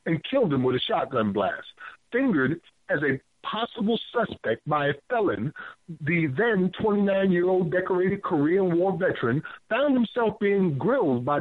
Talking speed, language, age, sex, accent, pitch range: 140 wpm, English, 50-69, male, American, 155-210 Hz